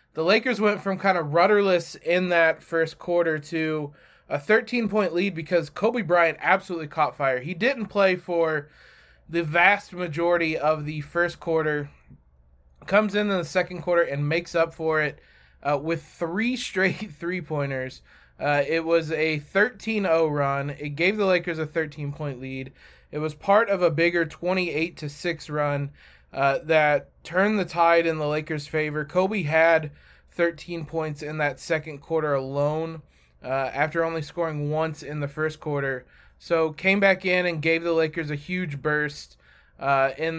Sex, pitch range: male, 150-180 Hz